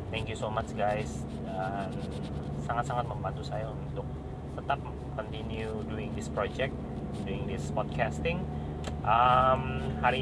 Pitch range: 75-120 Hz